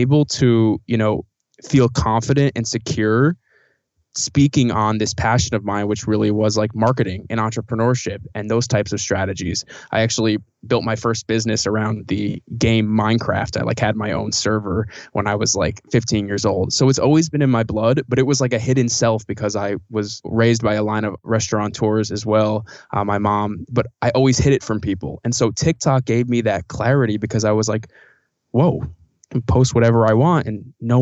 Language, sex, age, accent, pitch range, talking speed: English, male, 20-39, American, 105-120 Hz, 200 wpm